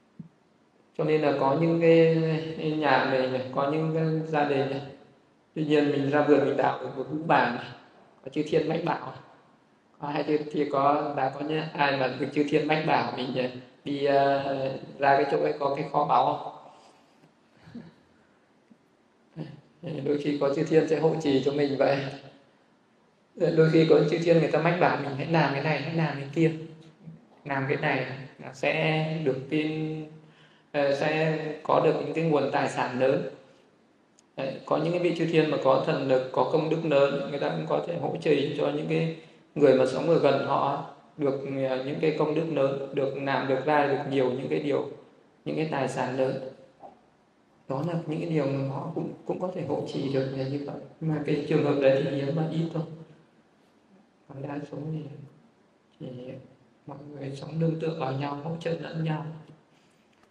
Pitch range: 135-160 Hz